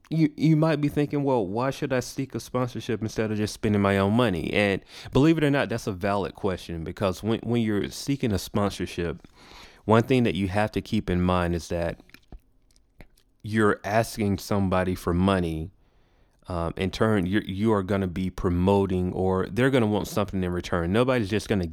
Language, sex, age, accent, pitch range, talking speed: English, male, 30-49, American, 95-115 Hz, 195 wpm